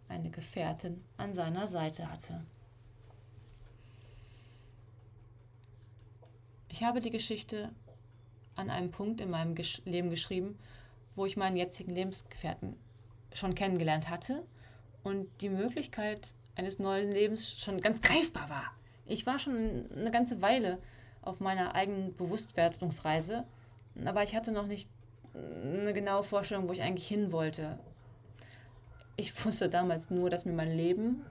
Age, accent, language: 20-39, German, German